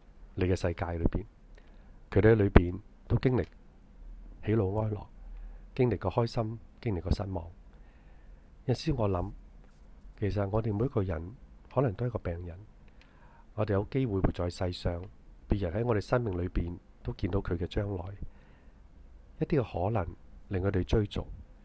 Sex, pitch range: male, 85-105 Hz